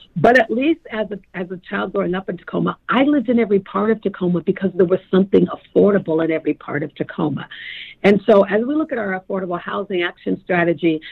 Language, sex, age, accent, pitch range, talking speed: English, female, 50-69, American, 185-235 Hz, 215 wpm